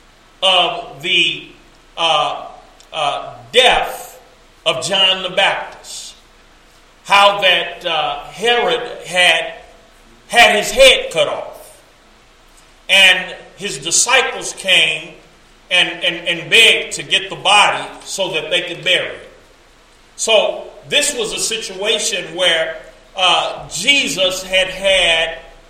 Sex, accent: male, American